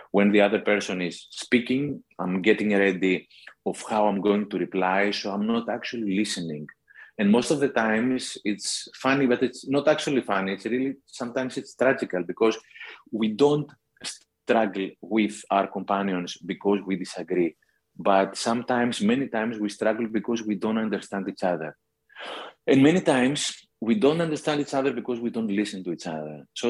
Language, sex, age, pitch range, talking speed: Dutch, male, 30-49, 100-125 Hz, 170 wpm